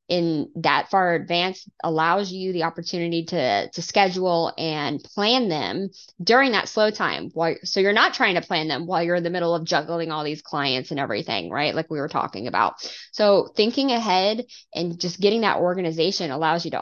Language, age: English, 20-39